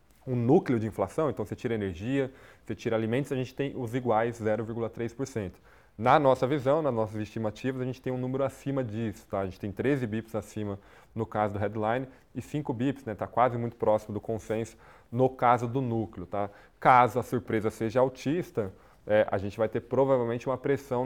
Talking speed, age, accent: 195 wpm, 20-39, Brazilian